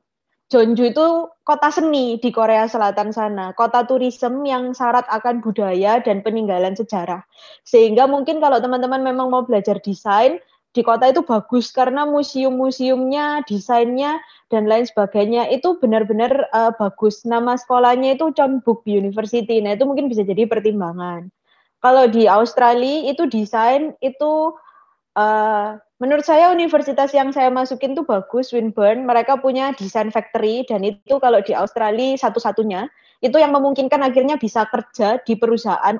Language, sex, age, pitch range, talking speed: Indonesian, female, 20-39, 215-265 Hz, 140 wpm